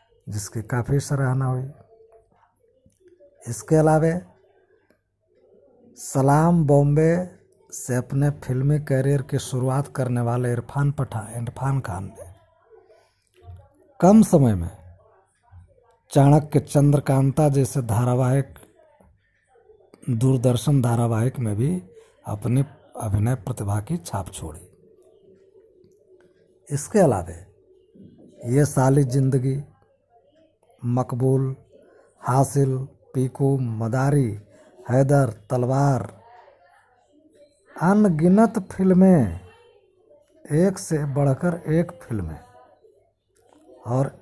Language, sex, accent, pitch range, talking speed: Hindi, male, native, 130-205 Hz, 75 wpm